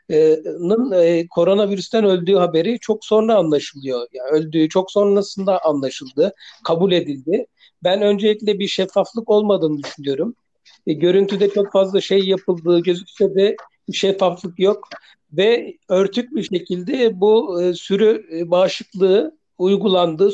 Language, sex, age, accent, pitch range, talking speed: Turkish, male, 60-79, native, 165-200 Hz, 105 wpm